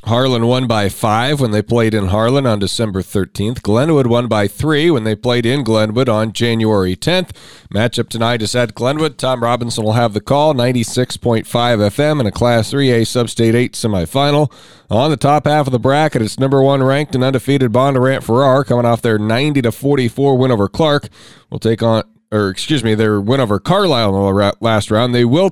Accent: American